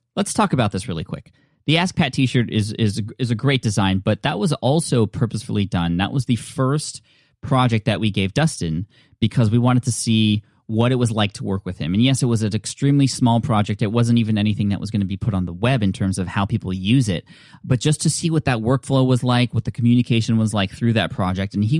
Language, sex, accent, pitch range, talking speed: English, male, American, 100-125 Hz, 245 wpm